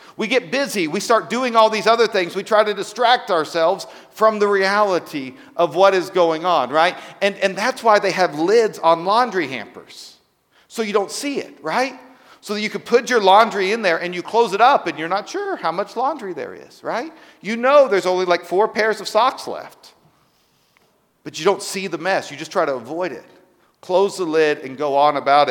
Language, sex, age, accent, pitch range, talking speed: English, male, 40-59, American, 145-210 Hz, 220 wpm